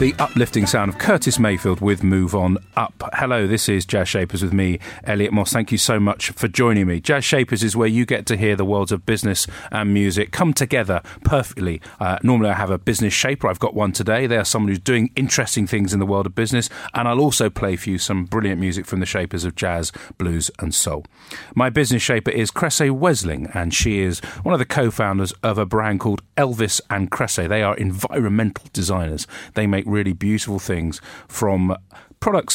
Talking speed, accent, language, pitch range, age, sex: 210 wpm, British, English, 95-115 Hz, 40-59, male